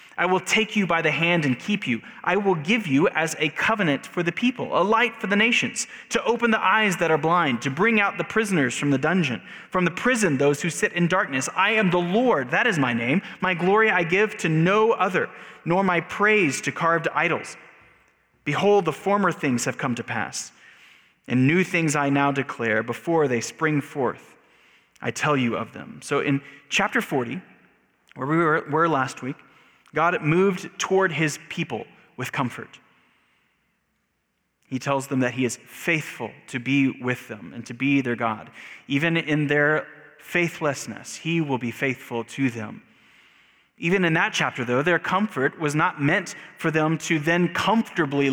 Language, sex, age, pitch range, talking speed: English, male, 30-49, 135-185 Hz, 185 wpm